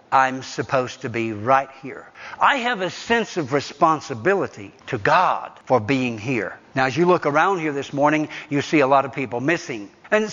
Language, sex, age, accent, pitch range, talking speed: English, male, 60-79, American, 135-180 Hz, 190 wpm